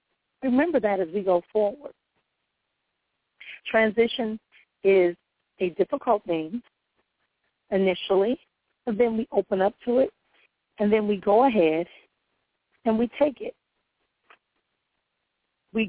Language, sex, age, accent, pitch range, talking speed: English, female, 40-59, American, 185-235 Hz, 110 wpm